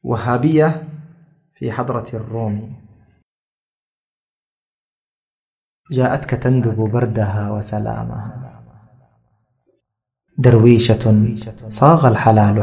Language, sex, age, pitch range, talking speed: Arabic, male, 30-49, 105-120 Hz, 50 wpm